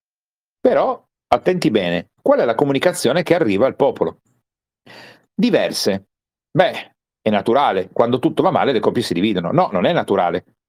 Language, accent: Italian, native